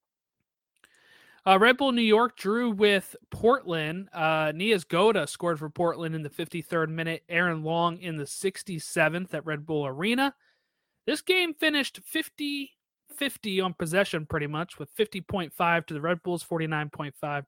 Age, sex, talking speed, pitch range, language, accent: 30-49, male, 145 wpm, 160-220 Hz, English, American